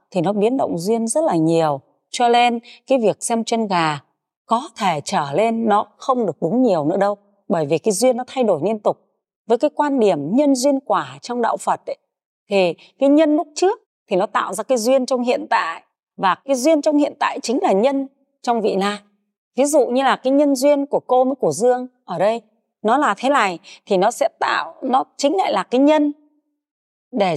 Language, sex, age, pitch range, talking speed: Vietnamese, female, 30-49, 205-290 Hz, 220 wpm